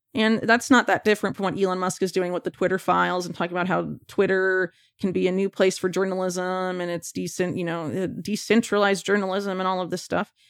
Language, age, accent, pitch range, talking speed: English, 30-49, American, 180-215 Hz, 225 wpm